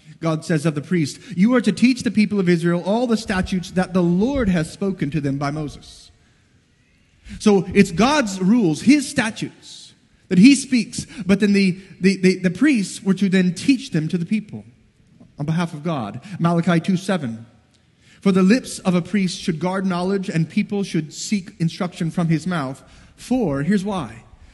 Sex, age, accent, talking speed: male, 30-49, American, 185 wpm